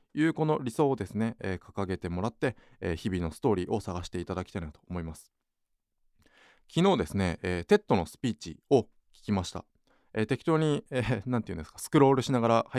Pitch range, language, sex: 90-125 Hz, Japanese, male